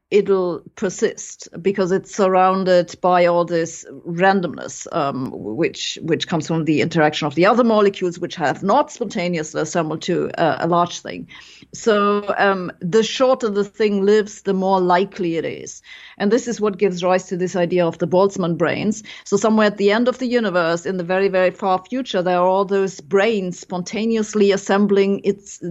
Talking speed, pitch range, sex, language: 180 wpm, 175-210 Hz, female, English